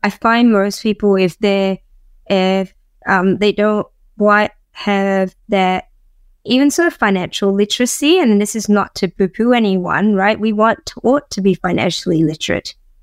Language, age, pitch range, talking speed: English, 20-39, 190-220 Hz, 155 wpm